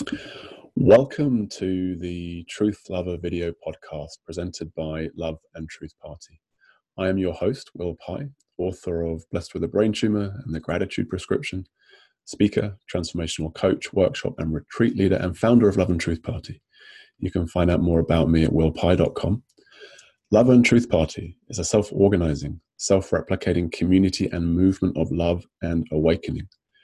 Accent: British